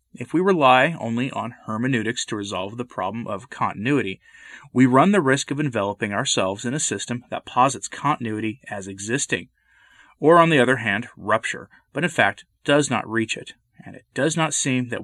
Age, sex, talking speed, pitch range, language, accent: 30-49, male, 185 wpm, 110-145 Hz, English, American